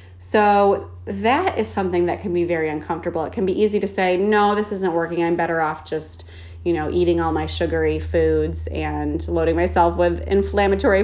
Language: English